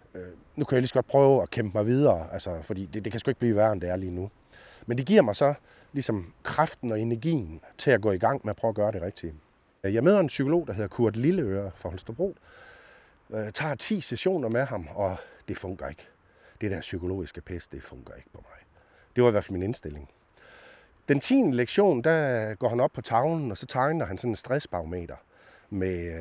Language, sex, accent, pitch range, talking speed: Danish, male, native, 90-130 Hz, 225 wpm